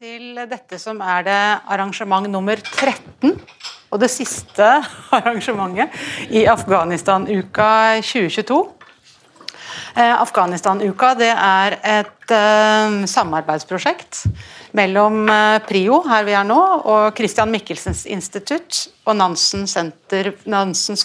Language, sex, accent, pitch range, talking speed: English, female, Swedish, 190-235 Hz, 115 wpm